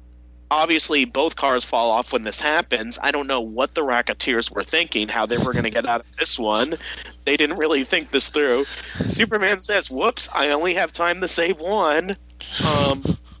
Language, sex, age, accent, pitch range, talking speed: English, male, 30-49, American, 115-165 Hz, 195 wpm